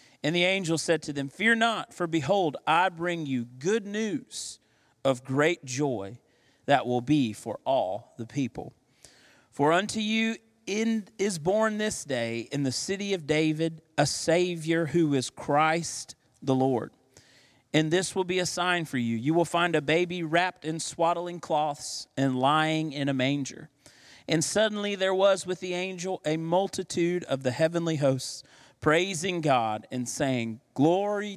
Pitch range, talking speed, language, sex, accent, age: 130-175 Hz, 165 wpm, English, male, American, 40-59